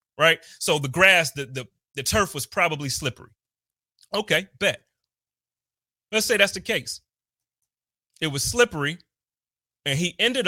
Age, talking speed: 30-49, 135 wpm